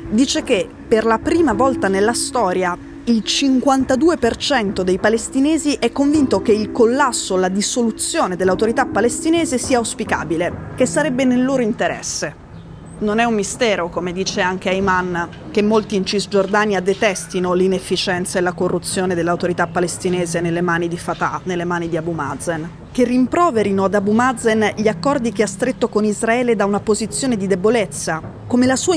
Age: 20-39